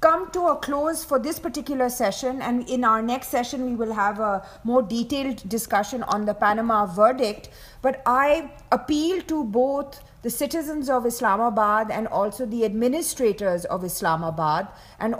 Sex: female